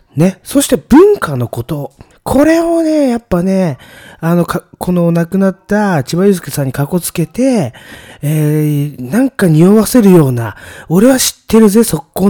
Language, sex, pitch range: Japanese, male, 125-195 Hz